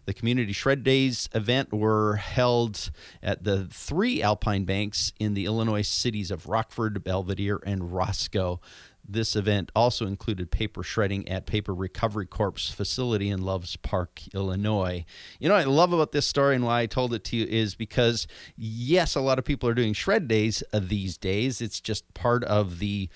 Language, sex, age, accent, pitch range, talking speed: English, male, 30-49, American, 95-115 Hz, 175 wpm